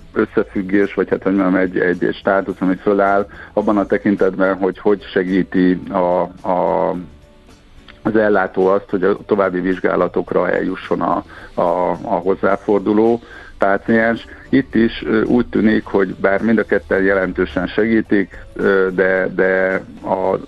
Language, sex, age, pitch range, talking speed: Hungarian, male, 50-69, 90-100 Hz, 125 wpm